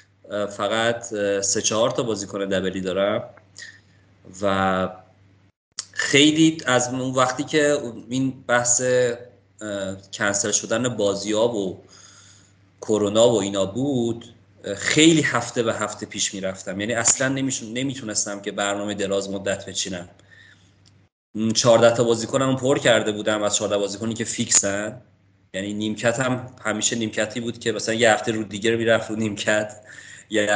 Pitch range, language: 100-120 Hz, Persian